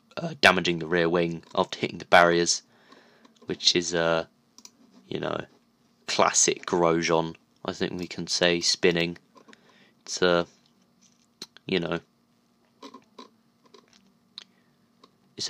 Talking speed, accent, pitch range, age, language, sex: 105 wpm, British, 90-110 Hz, 20-39, English, male